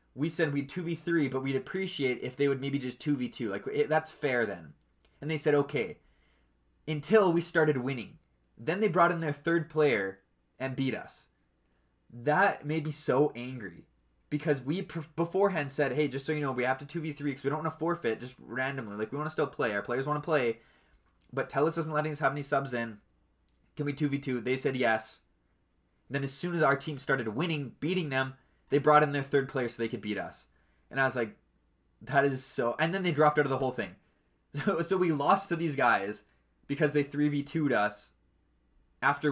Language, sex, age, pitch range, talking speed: English, male, 20-39, 115-150 Hz, 210 wpm